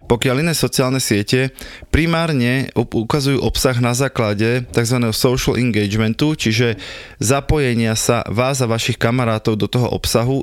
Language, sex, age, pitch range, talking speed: Slovak, male, 20-39, 110-135 Hz, 125 wpm